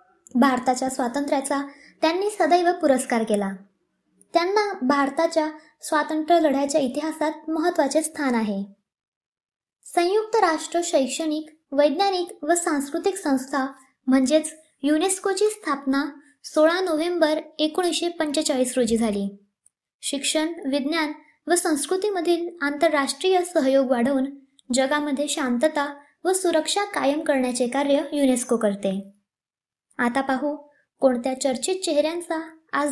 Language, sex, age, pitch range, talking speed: Marathi, male, 20-39, 275-335 Hz, 95 wpm